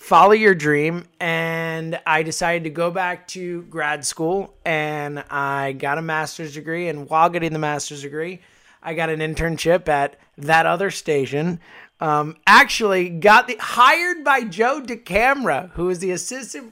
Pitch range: 160-200 Hz